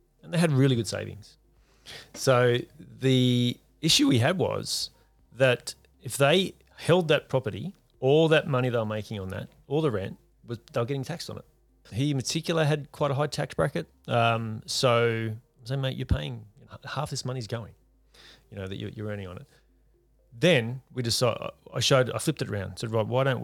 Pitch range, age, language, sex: 110-135 Hz, 30-49, English, male